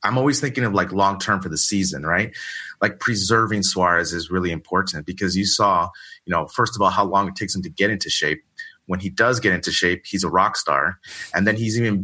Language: English